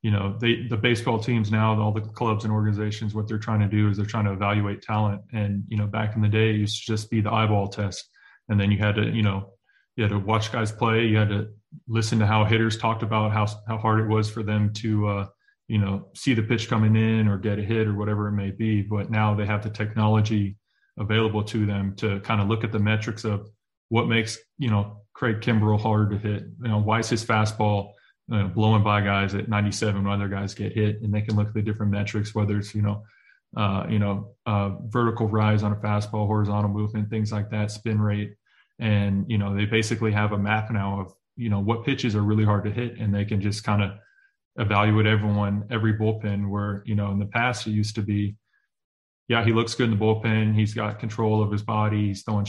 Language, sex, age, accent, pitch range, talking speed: English, male, 20-39, American, 105-110 Hz, 240 wpm